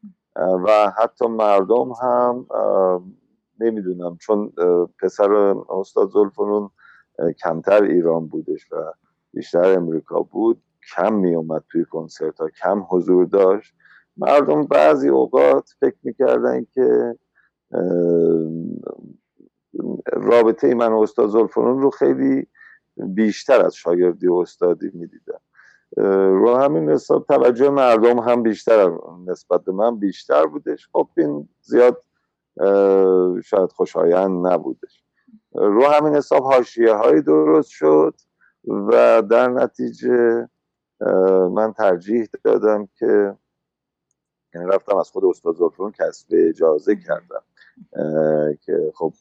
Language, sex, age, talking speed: Persian, male, 50-69, 100 wpm